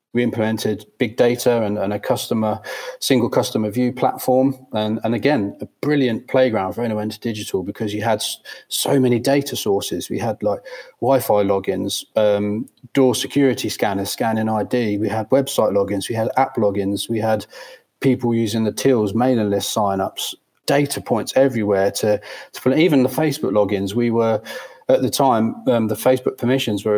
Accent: British